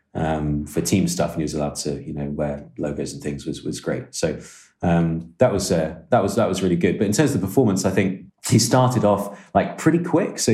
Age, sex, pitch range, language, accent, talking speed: 30-49, male, 75-100 Hz, English, British, 250 wpm